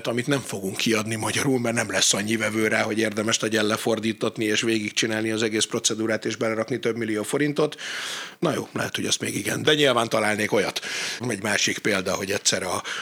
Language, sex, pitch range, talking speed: Hungarian, male, 105-145 Hz, 200 wpm